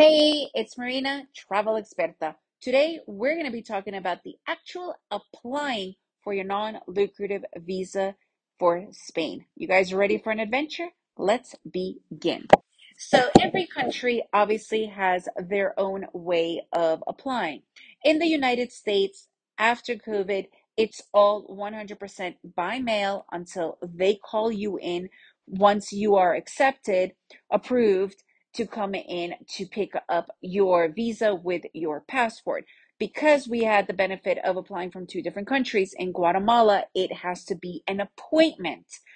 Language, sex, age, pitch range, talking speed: English, female, 30-49, 190-255 Hz, 135 wpm